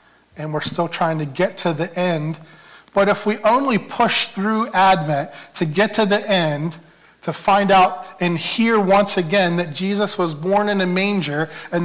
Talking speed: 180 wpm